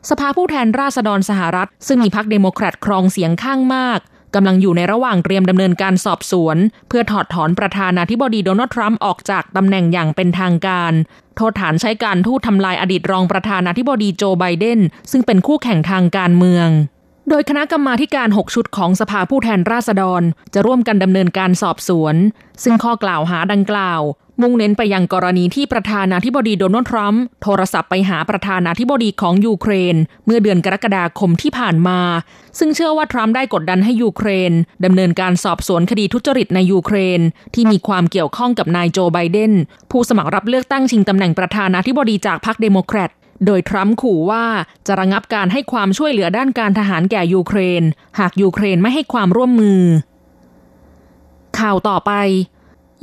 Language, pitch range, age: Thai, 180-225 Hz, 20-39